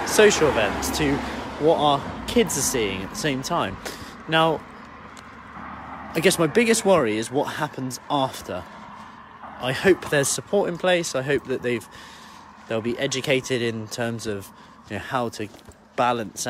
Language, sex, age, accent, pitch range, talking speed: English, male, 30-49, British, 110-145 Hz, 155 wpm